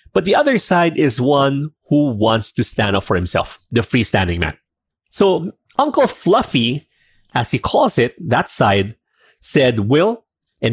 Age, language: 30-49, English